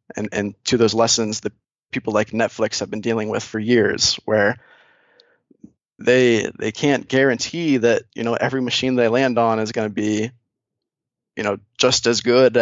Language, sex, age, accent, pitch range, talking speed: English, male, 20-39, American, 110-120 Hz, 175 wpm